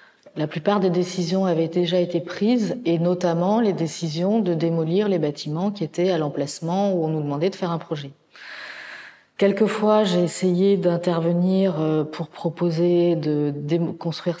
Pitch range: 160-190 Hz